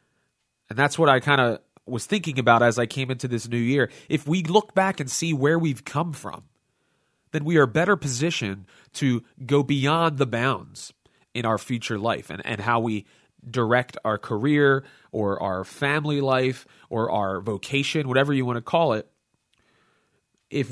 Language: English